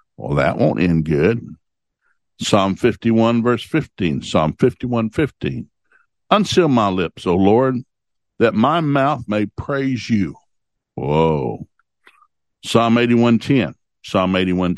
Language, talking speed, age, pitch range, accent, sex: English, 135 wpm, 60-79, 95-120 Hz, American, male